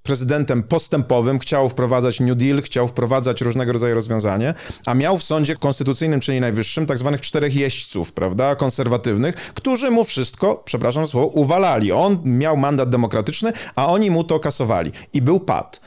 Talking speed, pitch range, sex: 160 wpm, 120-155 Hz, male